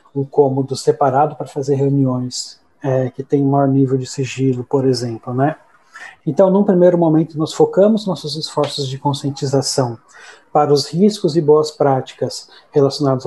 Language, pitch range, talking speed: Portuguese, 145-195 Hz, 155 wpm